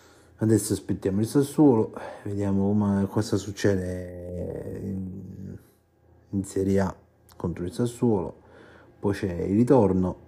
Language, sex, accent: Italian, male, native